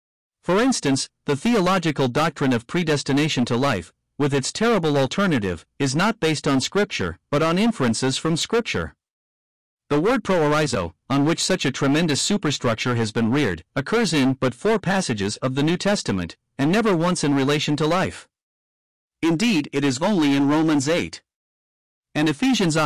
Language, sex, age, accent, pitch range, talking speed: English, male, 50-69, American, 125-170 Hz, 155 wpm